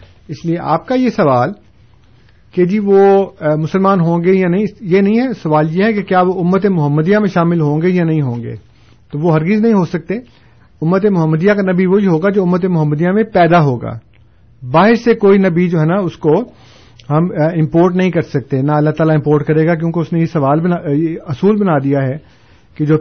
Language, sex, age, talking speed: Urdu, male, 50-69, 220 wpm